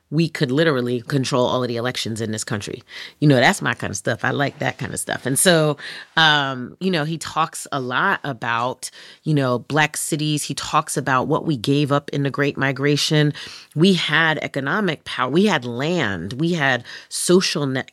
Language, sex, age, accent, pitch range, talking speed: English, female, 30-49, American, 130-160 Hz, 200 wpm